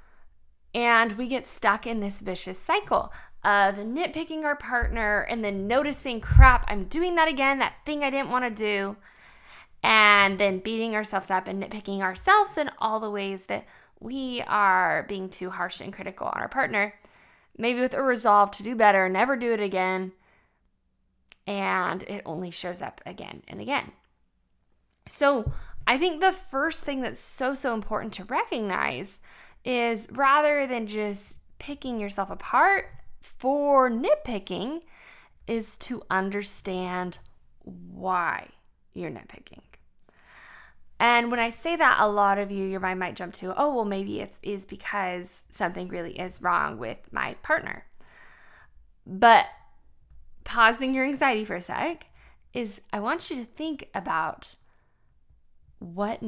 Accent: American